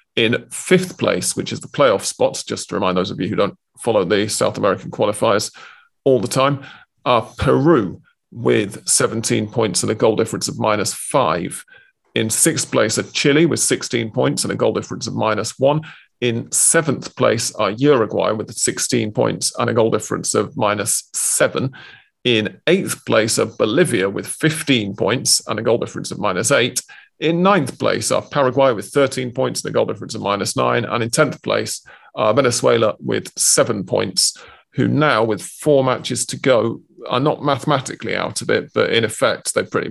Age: 40-59